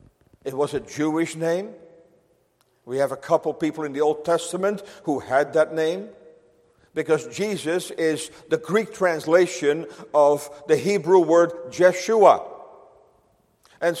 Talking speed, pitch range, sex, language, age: 130 wpm, 165-205 Hz, male, English, 50-69